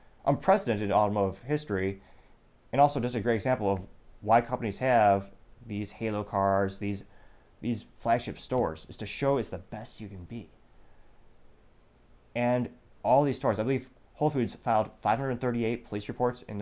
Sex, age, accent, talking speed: male, 30-49, American, 150 wpm